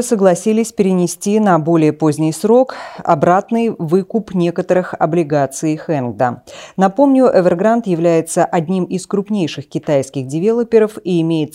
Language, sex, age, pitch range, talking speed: Russian, female, 20-39, 150-205 Hz, 110 wpm